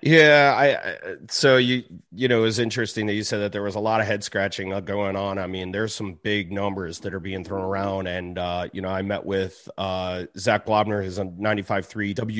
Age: 30-49